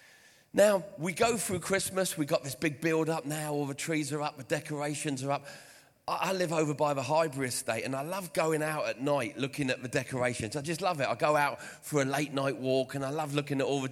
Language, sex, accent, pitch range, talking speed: English, male, British, 135-185 Hz, 245 wpm